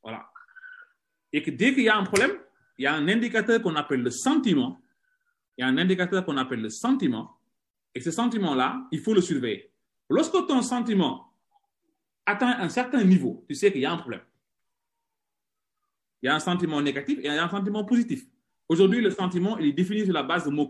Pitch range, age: 180-270 Hz, 30-49